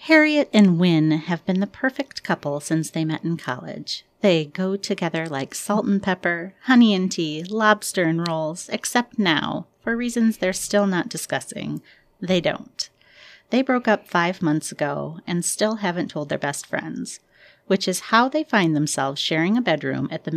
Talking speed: 175 wpm